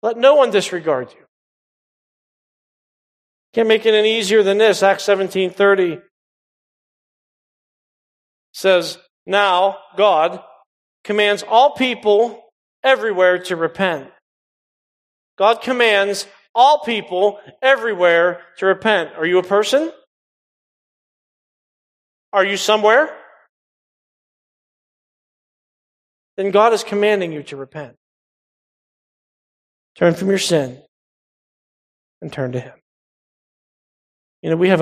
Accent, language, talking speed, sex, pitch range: American, English, 95 wpm, male, 175-230 Hz